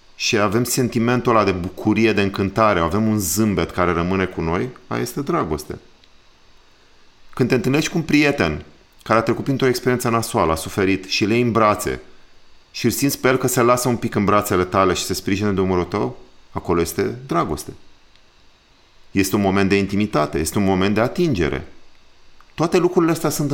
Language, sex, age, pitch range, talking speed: Romanian, male, 40-59, 95-130 Hz, 180 wpm